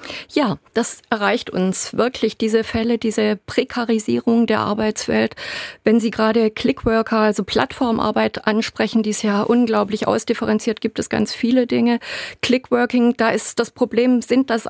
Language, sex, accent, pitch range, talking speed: German, female, German, 215-240 Hz, 145 wpm